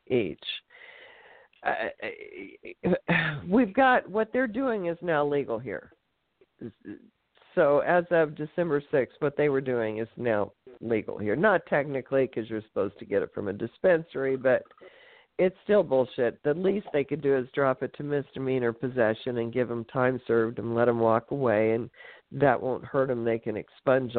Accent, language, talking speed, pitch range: American, English, 170 wpm, 125-165 Hz